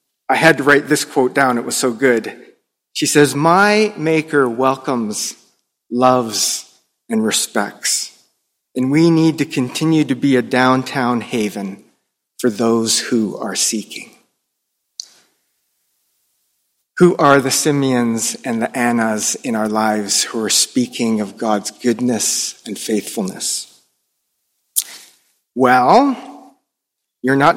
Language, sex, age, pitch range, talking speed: English, male, 30-49, 125-180 Hz, 120 wpm